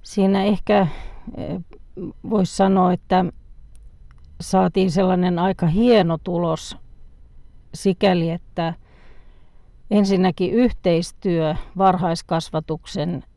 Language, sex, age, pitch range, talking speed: Finnish, female, 40-59, 160-195 Hz, 65 wpm